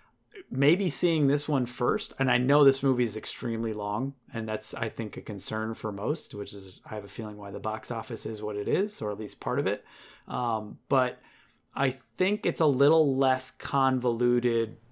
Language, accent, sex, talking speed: English, American, male, 200 wpm